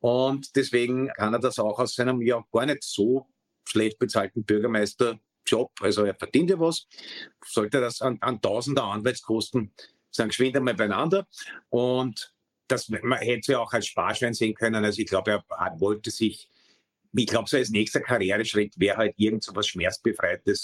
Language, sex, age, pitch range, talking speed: German, male, 50-69, 110-145 Hz, 170 wpm